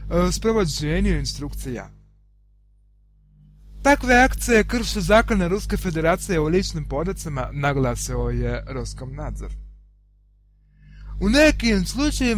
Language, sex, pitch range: Russian, male, 130-205 Hz